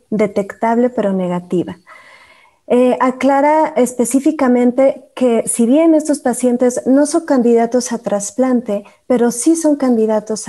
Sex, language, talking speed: female, Spanish, 115 wpm